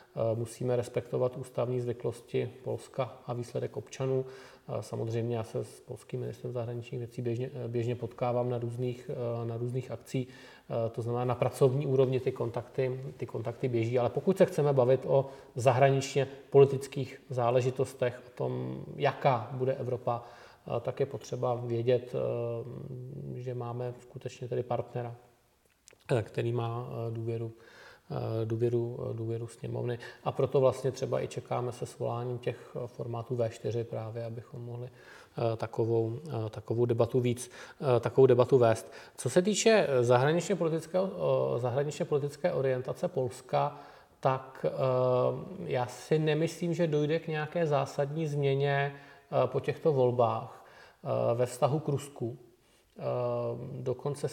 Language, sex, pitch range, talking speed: Czech, male, 120-135 Hz, 120 wpm